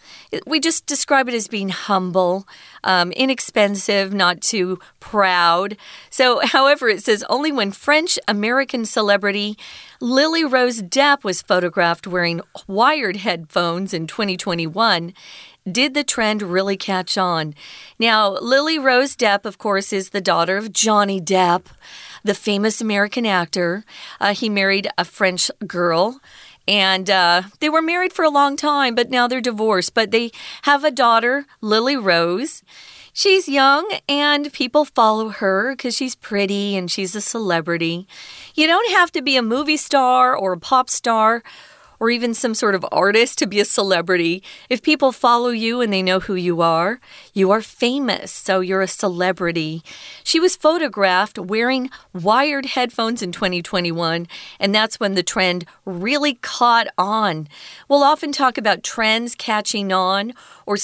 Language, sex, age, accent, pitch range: Chinese, female, 40-59, American, 185-255 Hz